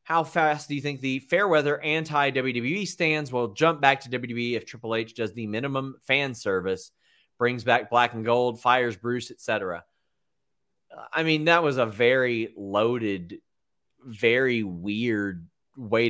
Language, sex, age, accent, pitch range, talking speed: English, male, 30-49, American, 115-155 Hz, 155 wpm